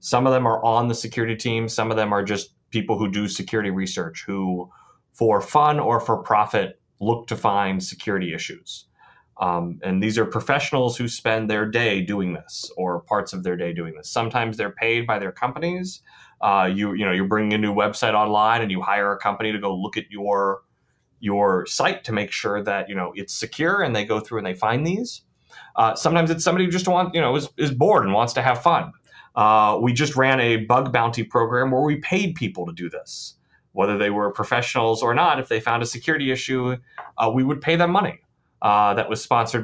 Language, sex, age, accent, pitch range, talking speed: English, male, 30-49, American, 105-140 Hz, 220 wpm